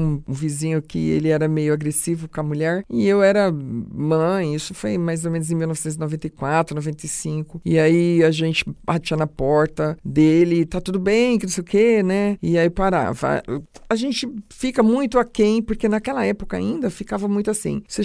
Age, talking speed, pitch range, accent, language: 50-69, 185 wpm, 160-205 Hz, Brazilian, English